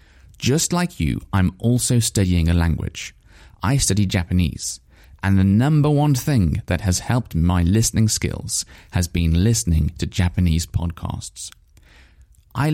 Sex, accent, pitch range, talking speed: male, British, 85-115 Hz, 135 wpm